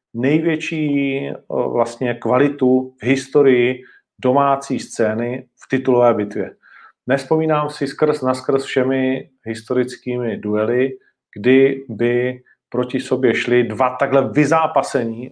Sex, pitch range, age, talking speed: male, 115-130 Hz, 40-59, 100 wpm